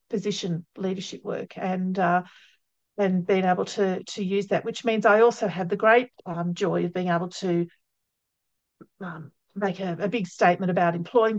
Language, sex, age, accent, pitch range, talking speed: English, female, 50-69, Australian, 185-230 Hz, 175 wpm